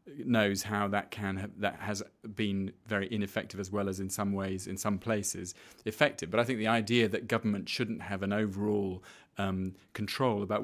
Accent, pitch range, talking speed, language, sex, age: British, 95-110 Hz, 190 wpm, English, male, 40-59